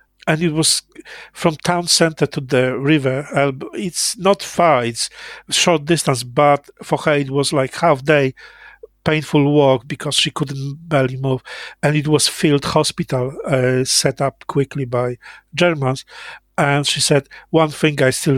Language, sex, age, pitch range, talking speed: English, male, 50-69, 135-160 Hz, 155 wpm